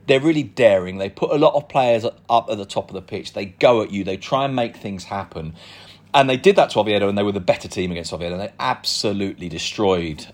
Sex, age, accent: male, 40-59, British